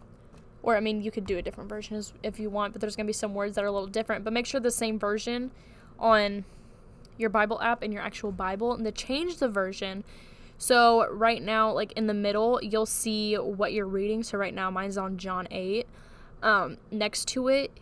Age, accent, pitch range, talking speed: 10-29, American, 205-230 Hz, 220 wpm